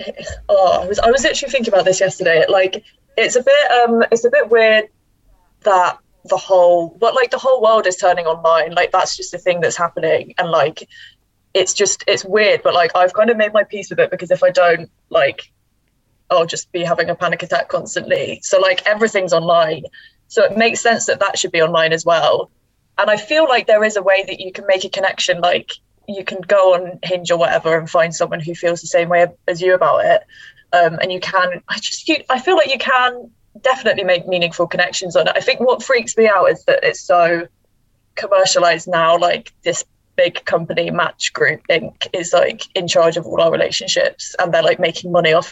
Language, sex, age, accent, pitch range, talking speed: English, female, 20-39, British, 170-230 Hz, 220 wpm